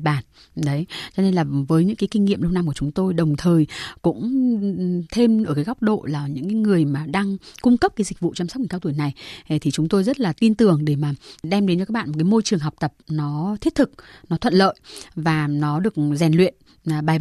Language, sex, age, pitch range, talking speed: Vietnamese, female, 20-39, 155-205 Hz, 250 wpm